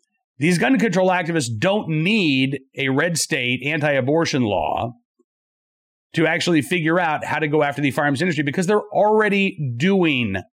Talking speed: 150 wpm